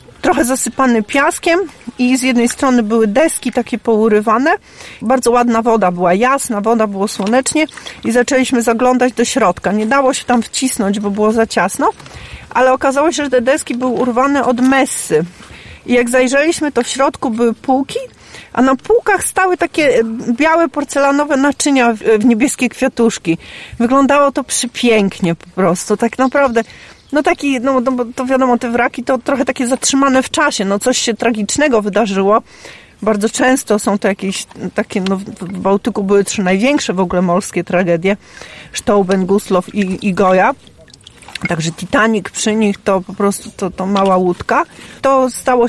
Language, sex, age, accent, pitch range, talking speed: Polish, female, 40-59, native, 205-265 Hz, 160 wpm